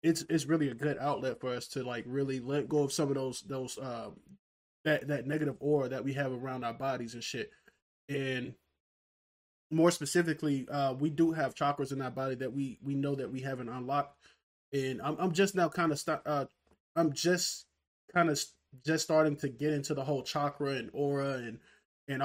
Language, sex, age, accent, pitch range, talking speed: English, male, 20-39, American, 130-145 Hz, 205 wpm